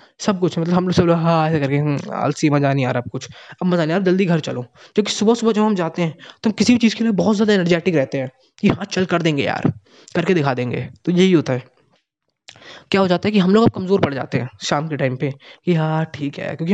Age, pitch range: 20-39, 145-190 Hz